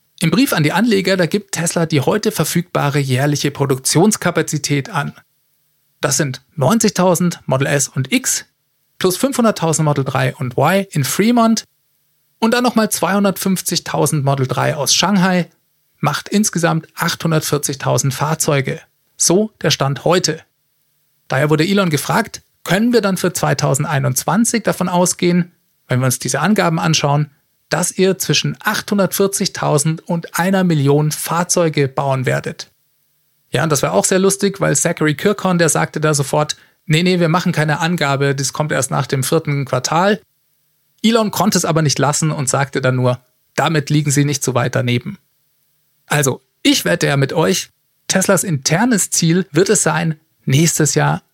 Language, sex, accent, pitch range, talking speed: German, male, German, 145-190 Hz, 150 wpm